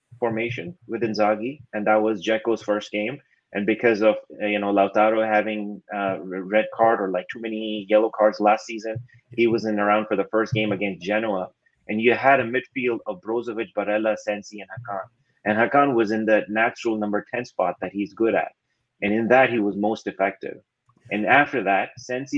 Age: 30-49